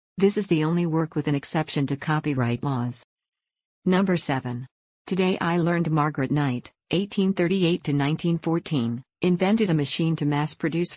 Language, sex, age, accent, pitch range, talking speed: English, female, 50-69, American, 140-170 Hz, 130 wpm